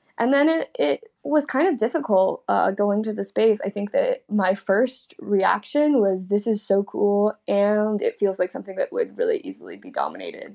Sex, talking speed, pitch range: female, 200 wpm, 195-230 Hz